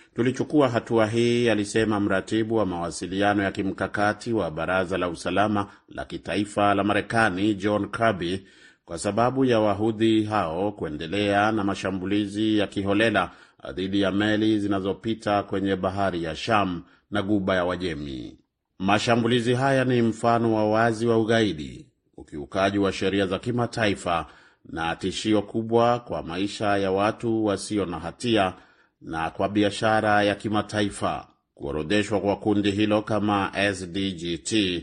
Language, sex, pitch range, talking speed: Swahili, male, 95-110 Hz, 130 wpm